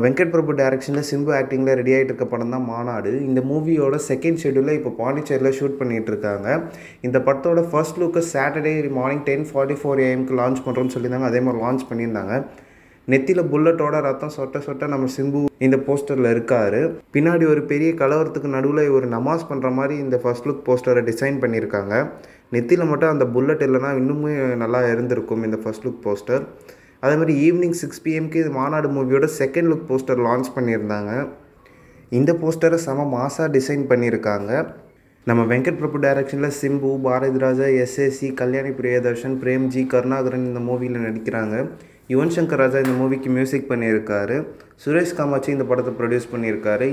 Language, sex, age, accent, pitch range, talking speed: Tamil, male, 20-39, native, 125-145 Hz, 150 wpm